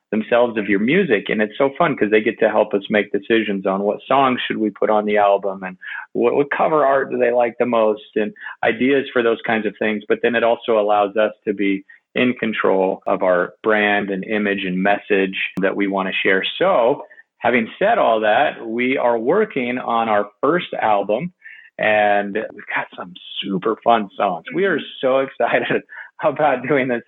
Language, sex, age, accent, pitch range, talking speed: English, male, 40-59, American, 100-120 Hz, 200 wpm